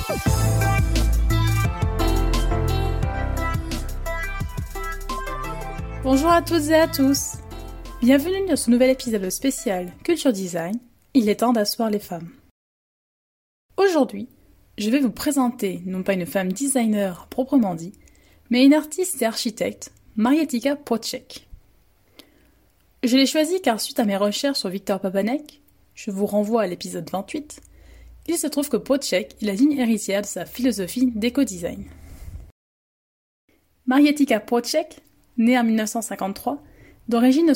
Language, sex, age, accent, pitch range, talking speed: French, female, 20-39, French, 190-270 Hz, 120 wpm